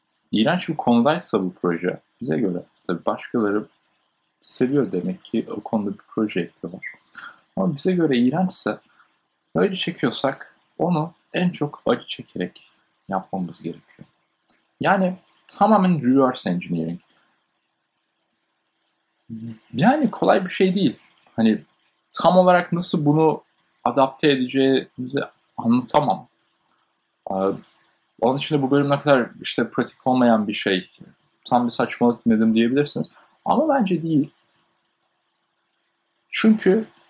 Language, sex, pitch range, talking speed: Turkish, male, 120-180 Hz, 105 wpm